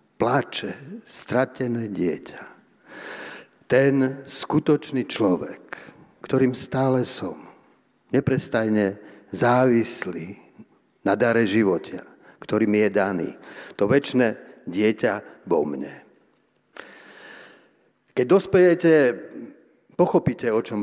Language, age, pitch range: Slovak, 60-79, 105-140 Hz